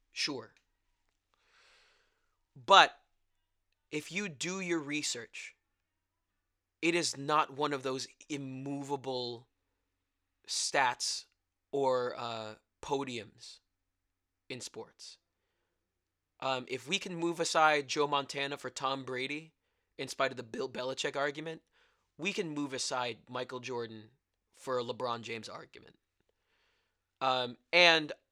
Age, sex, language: 20-39, male, English